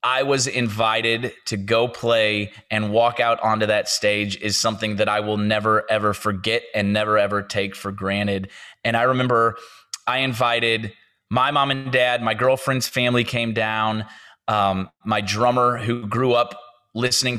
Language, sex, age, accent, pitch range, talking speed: English, male, 20-39, American, 110-130 Hz, 160 wpm